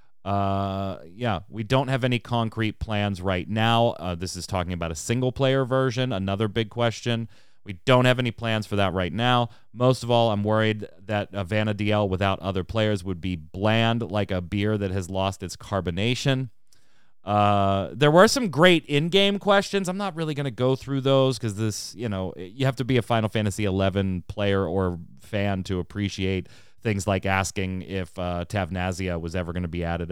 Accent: American